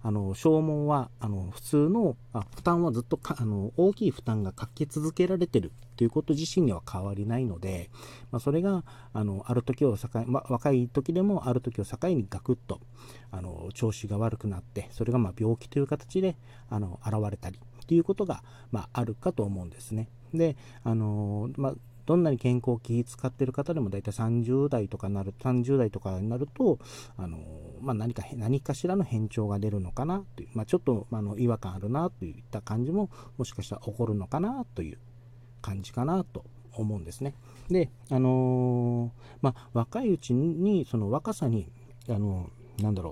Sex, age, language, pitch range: male, 40-59, Japanese, 110-145 Hz